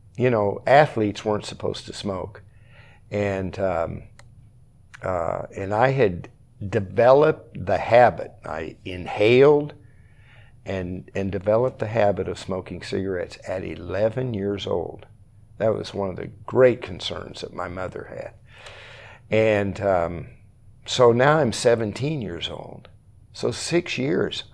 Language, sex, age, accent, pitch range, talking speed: English, male, 60-79, American, 100-120 Hz, 125 wpm